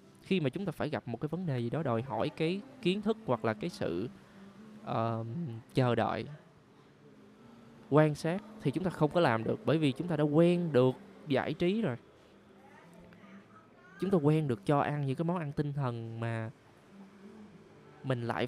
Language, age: Vietnamese, 20-39